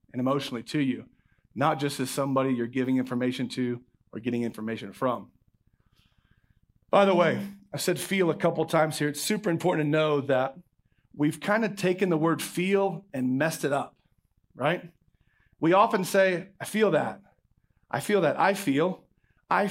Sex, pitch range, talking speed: male, 130-185 Hz, 170 wpm